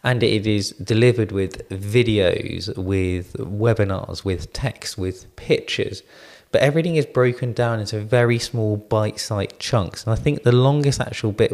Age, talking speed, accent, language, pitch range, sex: 20-39, 150 wpm, British, English, 100-120 Hz, male